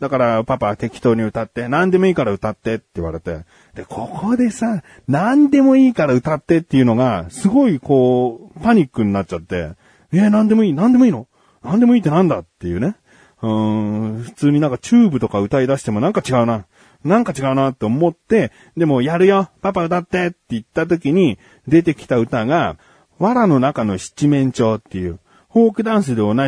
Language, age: Japanese, 40-59